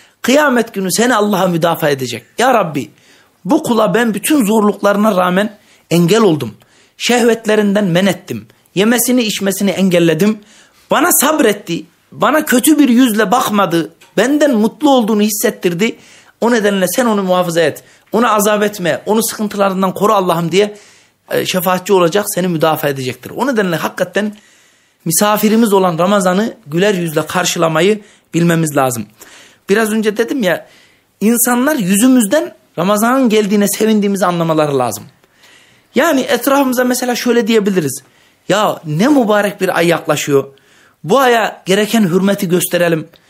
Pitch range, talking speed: 180-225 Hz, 125 wpm